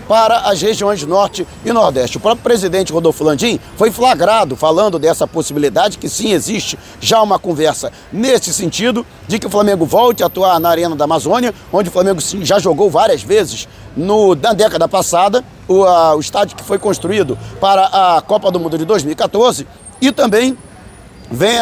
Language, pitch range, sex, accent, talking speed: Portuguese, 180-235 Hz, male, Brazilian, 170 wpm